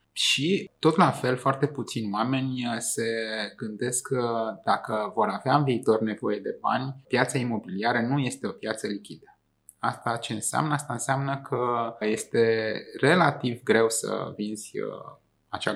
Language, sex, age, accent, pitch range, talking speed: Romanian, male, 20-39, native, 110-140 Hz, 140 wpm